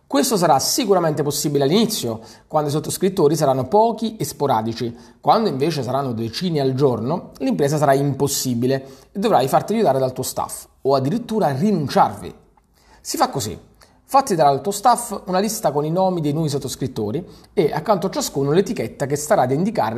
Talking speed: 160 wpm